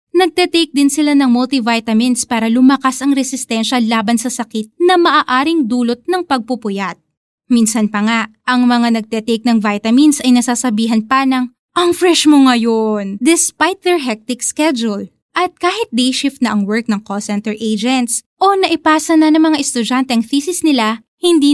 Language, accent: Filipino, native